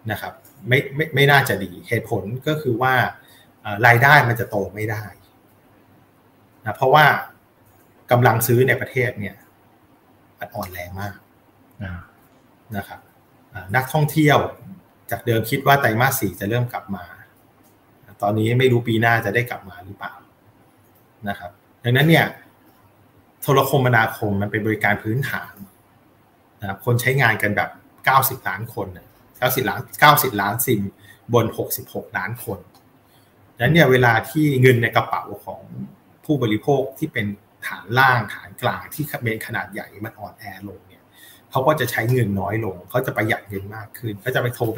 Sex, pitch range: male, 100-130 Hz